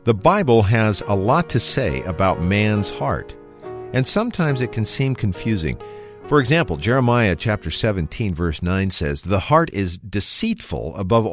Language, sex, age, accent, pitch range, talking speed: English, male, 50-69, American, 90-120 Hz, 155 wpm